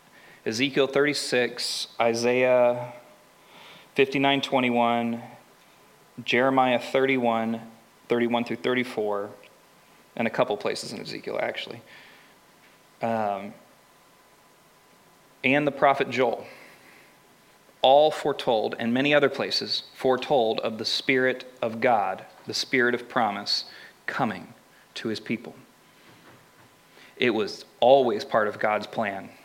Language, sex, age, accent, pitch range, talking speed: English, male, 30-49, American, 115-130 Hz, 95 wpm